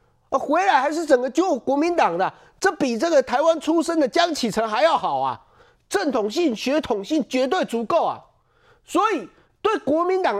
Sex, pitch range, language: male, 225-330 Hz, Chinese